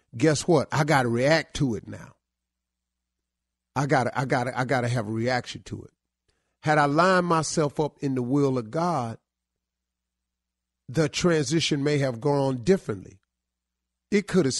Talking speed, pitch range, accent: 175 wpm, 105-145 Hz, American